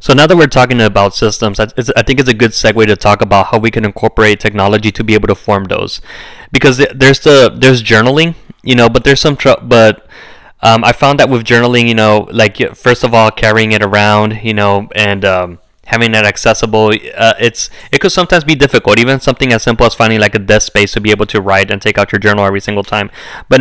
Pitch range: 105-125 Hz